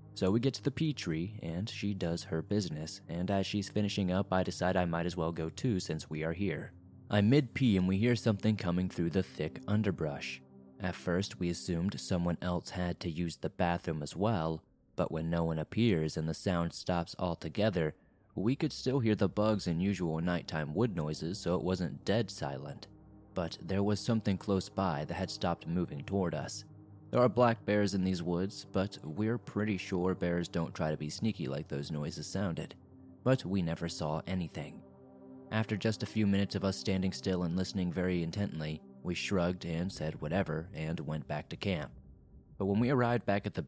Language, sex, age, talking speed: English, male, 20-39, 205 wpm